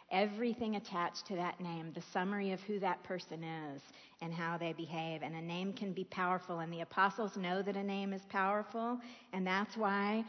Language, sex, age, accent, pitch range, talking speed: English, female, 50-69, American, 175-215 Hz, 200 wpm